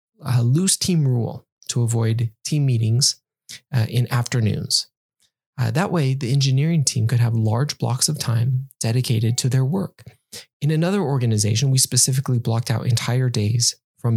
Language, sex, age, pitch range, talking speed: English, male, 20-39, 120-140 Hz, 155 wpm